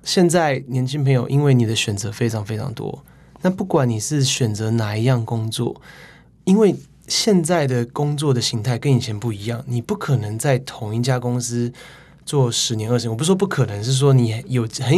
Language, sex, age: Chinese, male, 20-39